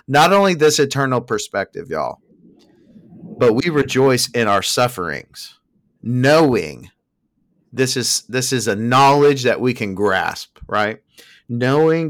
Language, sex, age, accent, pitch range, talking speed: English, male, 40-59, American, 100-135 Hz, 125 wpm